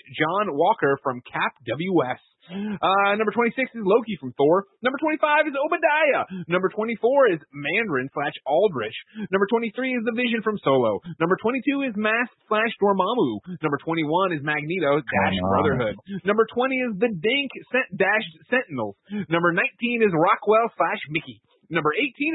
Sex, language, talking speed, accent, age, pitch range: male, English, 155 wpm, American, 30-49, 165-240 Hz